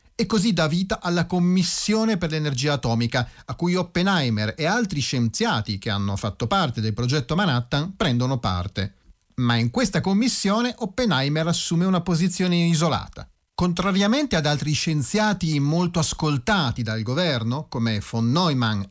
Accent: native